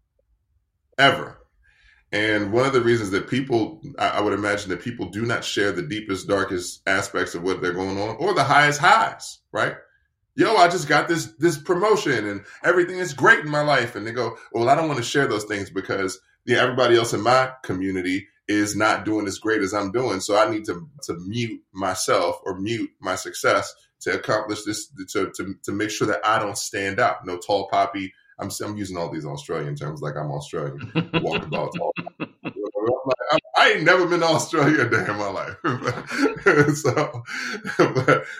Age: 10-29